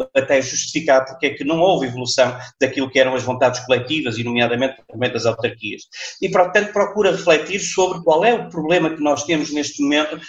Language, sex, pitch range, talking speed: Portuguese, male, 135-175 Hz, 185 wpm